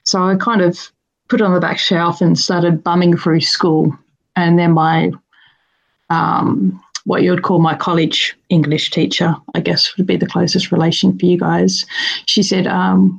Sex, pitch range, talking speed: female, 165-190 Hz, 180 wpm